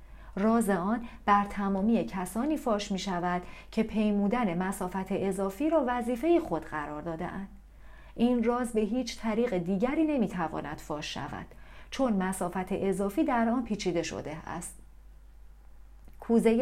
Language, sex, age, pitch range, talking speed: Persian, female, 40-59, 180-240 Hz, 125 wpm